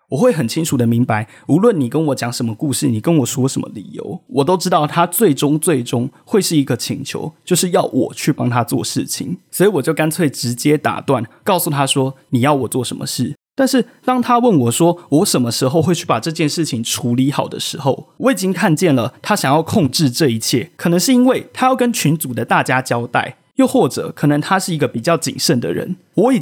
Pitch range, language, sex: 130-185 Hz, Chinese, male